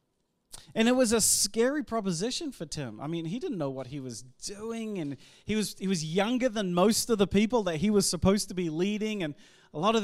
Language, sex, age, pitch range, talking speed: English, male, 40-59, 150-210 Hz, 235 wpm